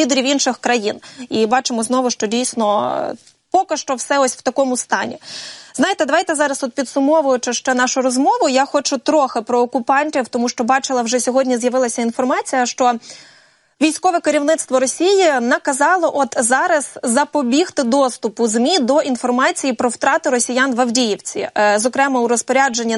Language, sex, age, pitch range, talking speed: Russian, female, 20-39, 245-290 Hz, 140 wpm